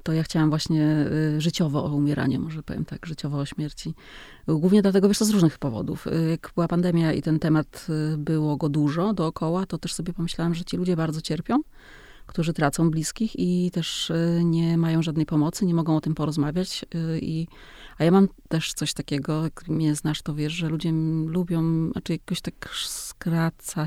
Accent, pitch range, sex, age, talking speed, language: native, 155-180 Hz, female, 30-49, 180 wpm, Polish